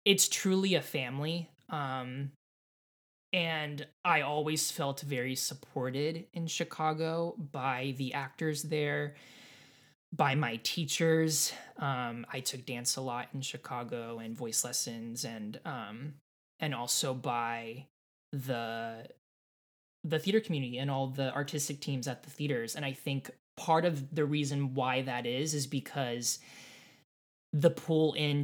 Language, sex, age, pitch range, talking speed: English, male, 20-39, 130-160 Hz, 135 wpm